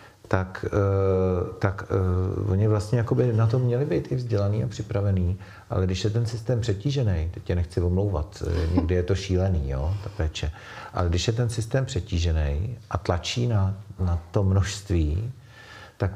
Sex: male